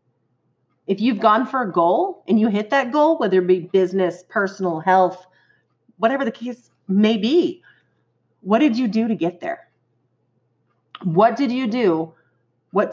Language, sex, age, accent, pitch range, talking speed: English, female, 40-59, American, 185-265 Hz, 160 wpm